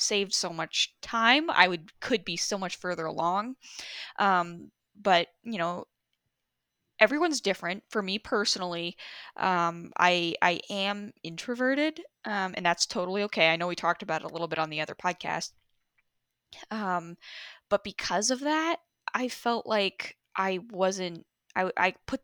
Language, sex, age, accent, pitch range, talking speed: English, female, 10-29, American, 170-210 Hz, 155 wpm